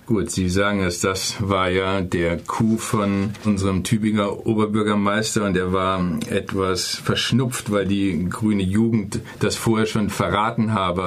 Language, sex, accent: German, male, German